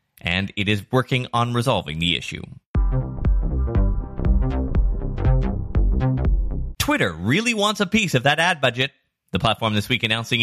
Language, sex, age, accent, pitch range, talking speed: English, male, 30-49, American, 100-155 Hz, 125 wpm